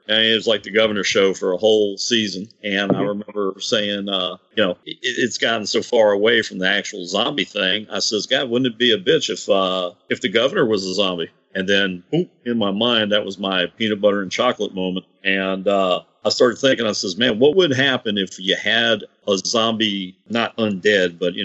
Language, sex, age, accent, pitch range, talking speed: English, male, 50-69, American, 95-115 Hz, 220 wpm